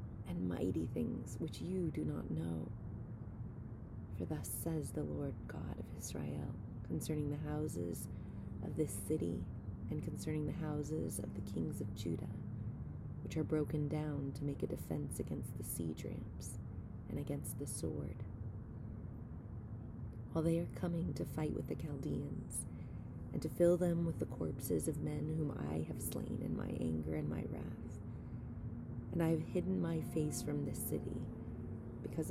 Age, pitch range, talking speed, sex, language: 30-49, 100-150 Hz, 160 wpm, female, English